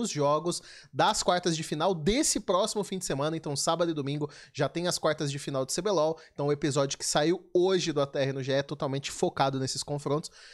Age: 20-39